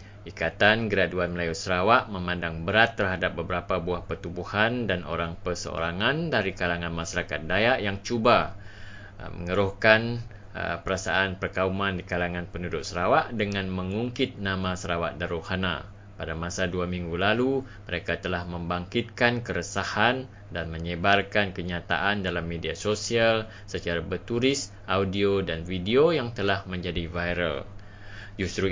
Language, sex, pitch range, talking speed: English, male, 90-105 Hz, 115 wpm